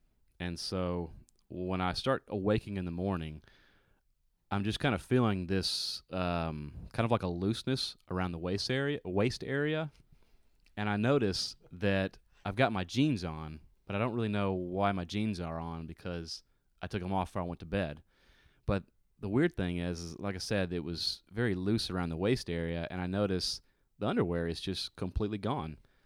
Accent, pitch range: American, 85-100 Hz